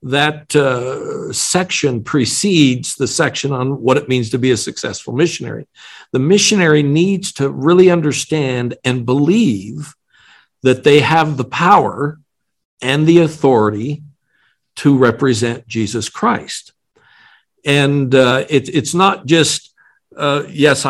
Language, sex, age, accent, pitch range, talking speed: English, male, 60-79, American, 130-150 Hz, 125 wpm